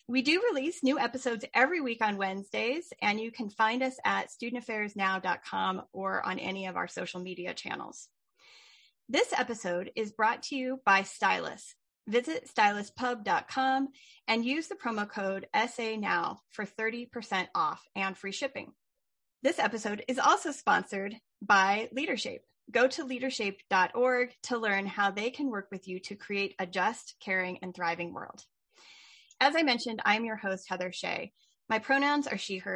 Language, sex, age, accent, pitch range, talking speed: English, female, 30-49, American, 190-250 Hz, 155 wpm